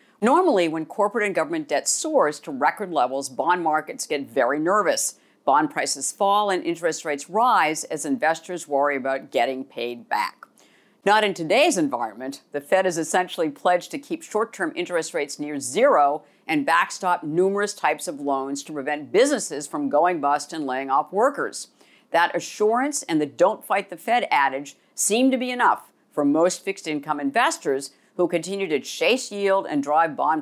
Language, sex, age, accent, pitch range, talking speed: English, female, 50-69, American, 145-200 Hz, 165 wpm